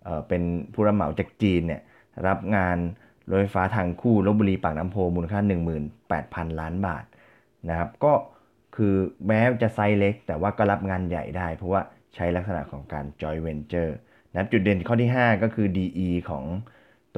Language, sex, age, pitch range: Thai, male, 20-39, 85-105 Hz